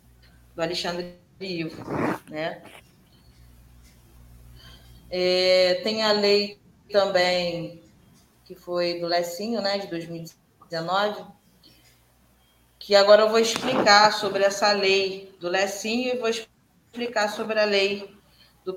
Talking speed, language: 100 wpm, Portuguese